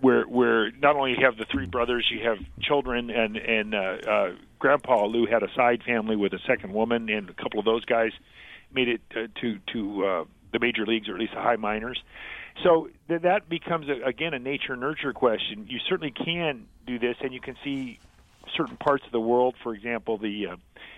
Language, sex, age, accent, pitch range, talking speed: English, male, 50-69, American, 110-140 Hz, 215 wpm